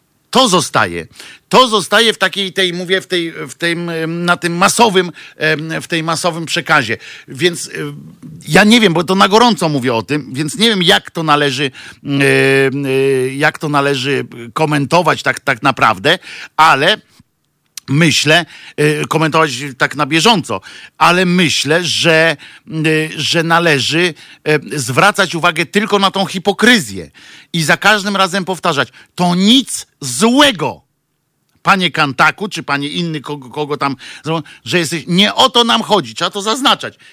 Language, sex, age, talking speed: Polish, male, 50-69, 140 wpm